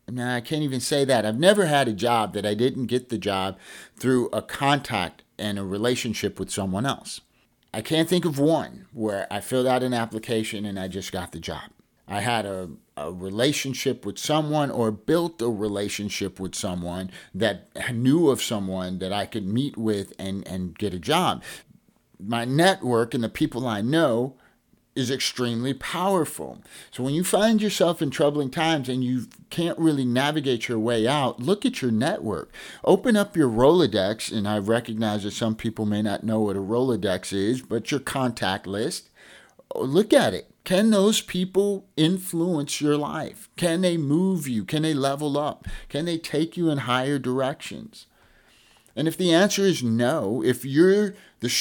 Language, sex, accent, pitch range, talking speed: English, male, American, 105-155 Hz, 180 wpm